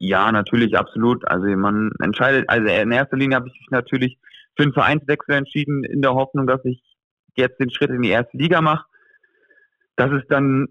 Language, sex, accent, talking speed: German, male, German, 190 wpm